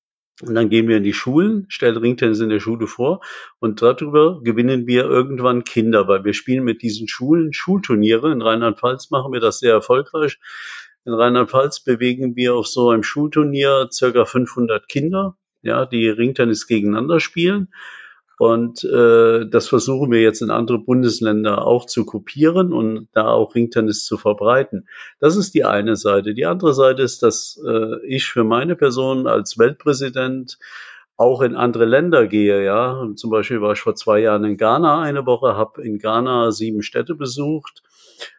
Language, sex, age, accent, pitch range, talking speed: German, male, 50-69, German, 115-135 Hz, 165 wpm